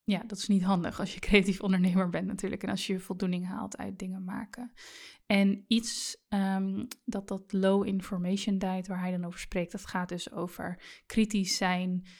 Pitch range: 185-210 Hz